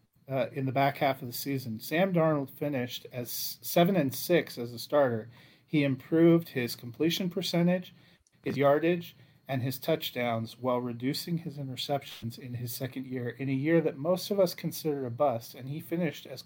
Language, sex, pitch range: English, male, 125-155 Hz